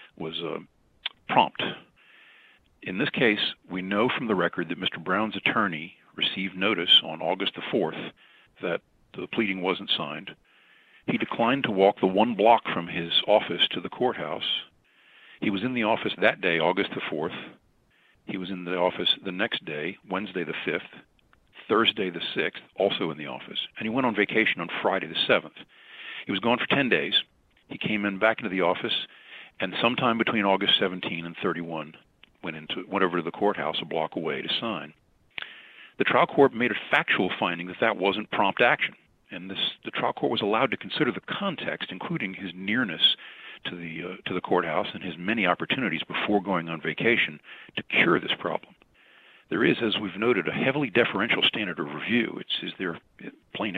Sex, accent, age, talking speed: male, American, 50-69, 185 wpm